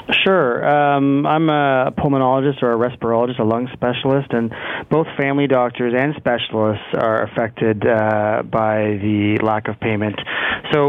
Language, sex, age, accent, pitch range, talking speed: English, male, 30-49, American, 115-130 Hz, 145 wpm